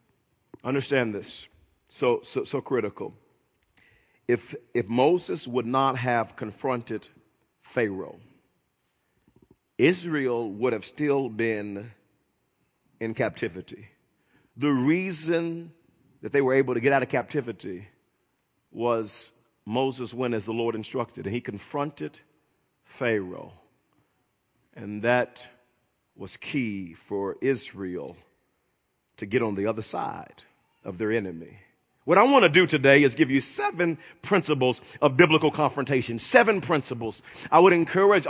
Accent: American